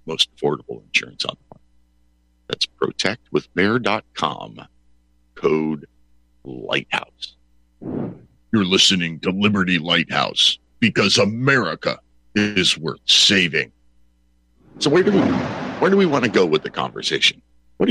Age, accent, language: 50-69, American, English